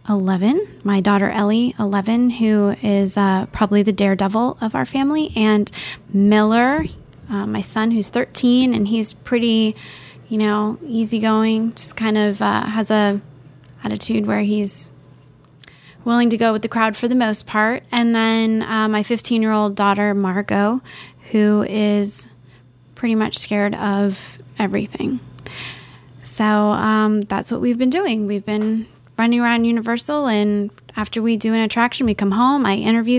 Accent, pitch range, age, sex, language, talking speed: American, 200-230 Hz, 10-29, female, English, 150 wpm